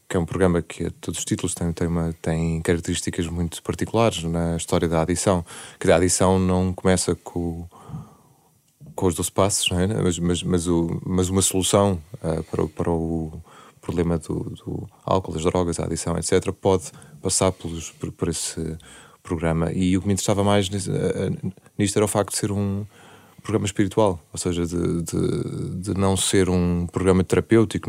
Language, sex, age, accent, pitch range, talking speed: Portuguese, male, 20-39, Belgian, 85-95 Hz, 185 wpm